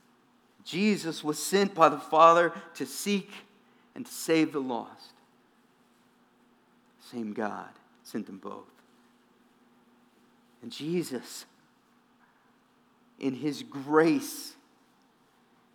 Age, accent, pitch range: 50-69, American, 190-240 Hz